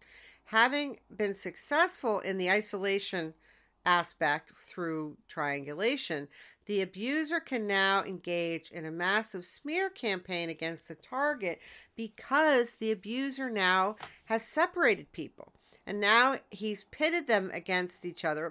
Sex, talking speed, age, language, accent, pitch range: female, 120 wpm, 50-69, English, American, 170-230 Hz